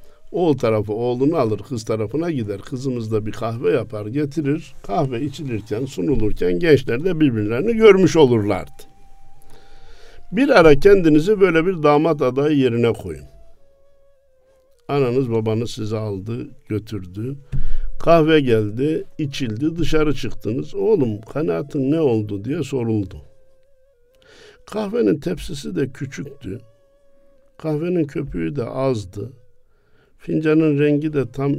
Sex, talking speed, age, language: male, 110 wpm, 60-79, Turkish